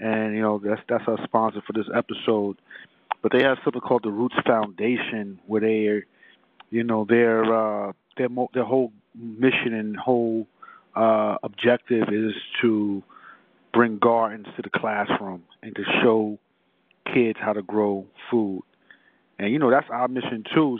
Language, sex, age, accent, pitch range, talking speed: English, male, 40-59, American, 105-115 Hz, 160 wpm